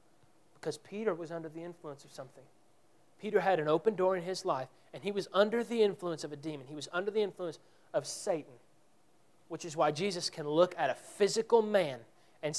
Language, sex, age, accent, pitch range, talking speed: English, male, 30-49, American, 170-230 Hz, 205 wpm